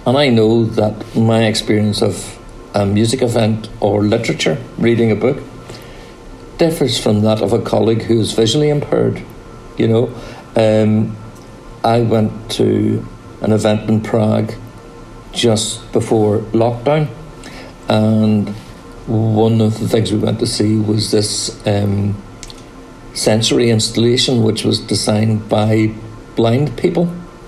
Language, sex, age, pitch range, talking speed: English, male, 60-79, 105-120 Hz, 125 wpm